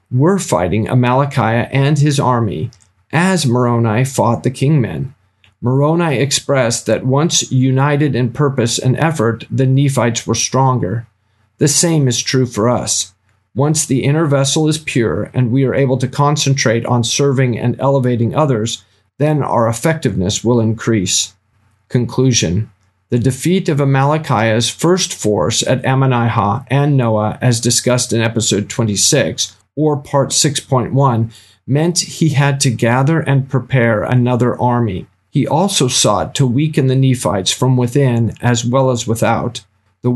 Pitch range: 115-140 Hz